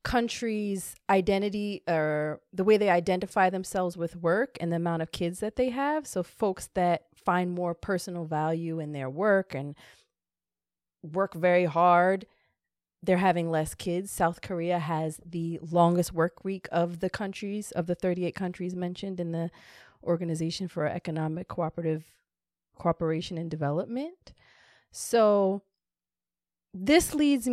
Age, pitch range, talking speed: 30-49, 165-205 Hz, 135 wpm